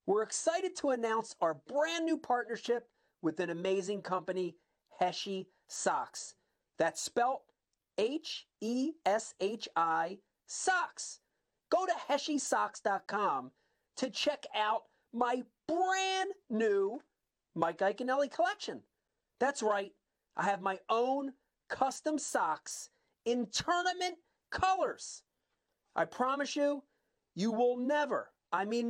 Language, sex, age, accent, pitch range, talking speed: English, male, 40-59, American, 200-290 Hz, 100 wpm